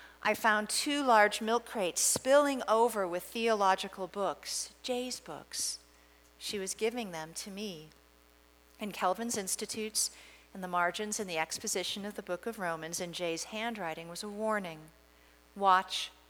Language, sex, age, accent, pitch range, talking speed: English, female, 50-69, American, 165-210 Hz, 150 wpm